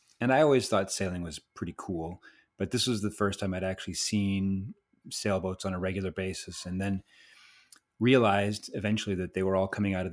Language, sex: English, male